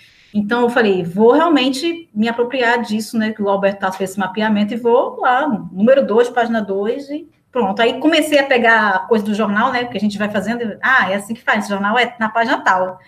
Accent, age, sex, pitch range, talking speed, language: Brazilian, 20-39, female, 190-250 Hz, 235 wpm, Portuguese